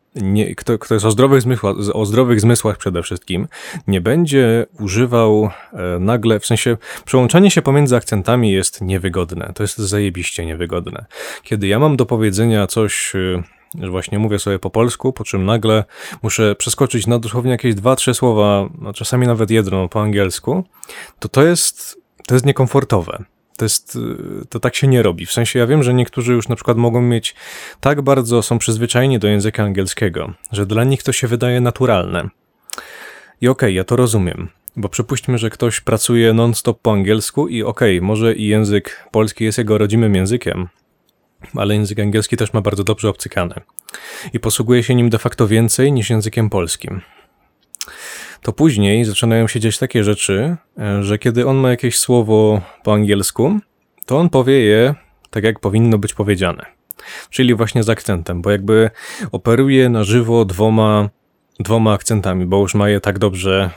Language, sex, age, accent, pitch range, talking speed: Polish, male, 20-39, native, 100-120 Hz, 160 wpm